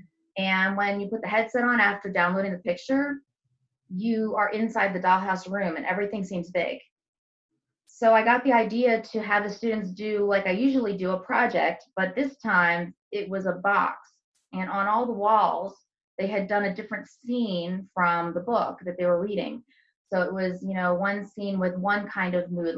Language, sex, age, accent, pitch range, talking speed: English, female, 20-39, American, 180-220 Hz, 195 wpm